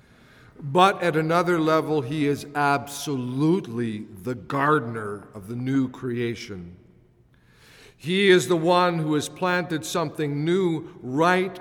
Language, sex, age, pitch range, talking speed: English, male, 50-69, 125-180 Hz, 120 wpm